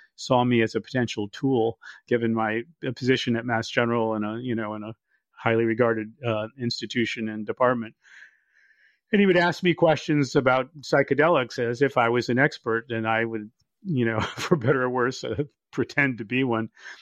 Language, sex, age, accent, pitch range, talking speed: English, male, 40-59, American, 115-130 Hz, 180 wpm